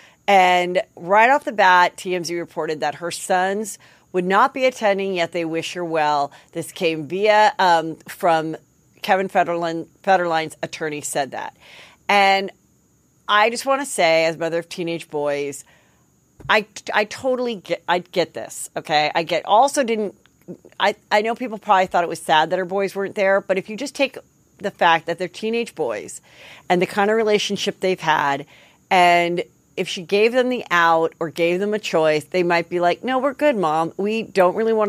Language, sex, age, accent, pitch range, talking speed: English, female, 40-59, American, 165-205 Hz, 195 wpm